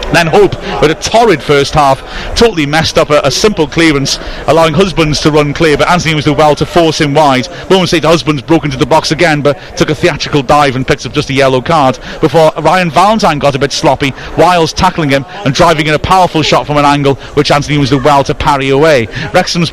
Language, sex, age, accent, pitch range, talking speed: English, male, 30-49, British, 140-170 Hz, 235 wpm